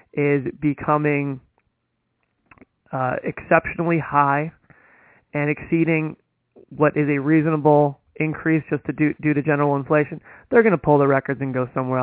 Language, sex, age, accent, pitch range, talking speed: English, male, 30-49, American, 140-170 Hz, 140 wpm